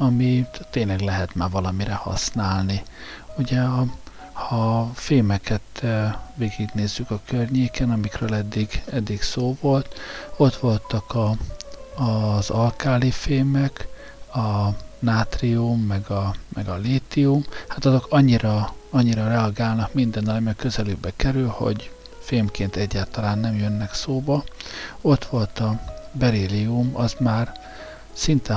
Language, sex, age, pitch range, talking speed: Hungarian, male, 50-69, 100-125 Hz, 110 wpm